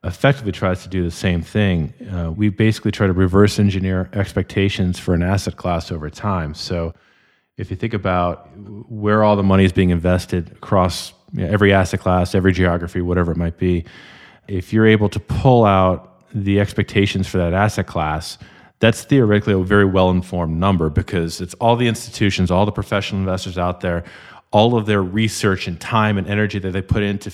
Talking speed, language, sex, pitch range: 185 wpm, English, male, 90-105 Hz